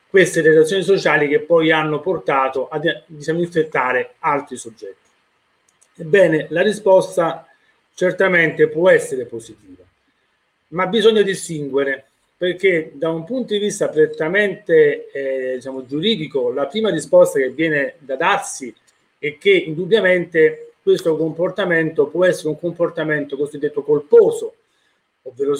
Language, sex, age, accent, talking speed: Italian, male, 30-49, native, 115 wpm